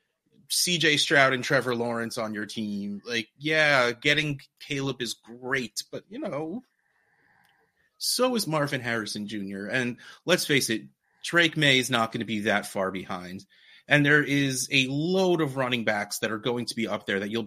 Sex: male